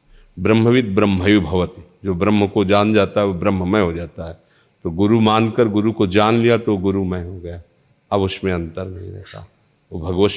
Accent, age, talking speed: native, 50-69, 185 wpm